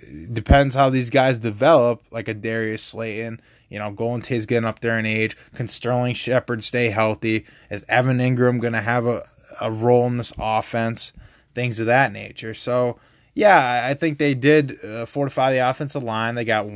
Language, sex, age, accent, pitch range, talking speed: English, male, 20-39, American, 110-130 Hz, 185 wpm